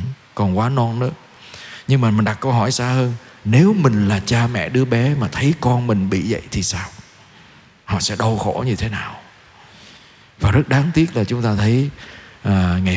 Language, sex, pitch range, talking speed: Vietnamese, male, 110-150 Hz, 200 wpm